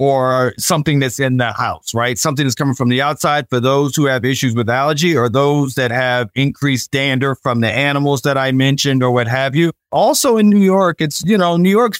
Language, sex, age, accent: English, male, 30-49, American